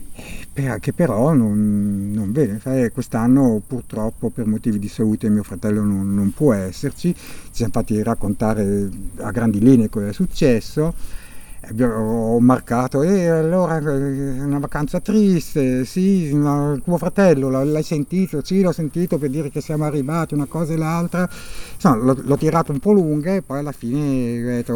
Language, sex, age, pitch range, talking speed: Italian, male, 50-69, 120-155 Hz, 165 wpm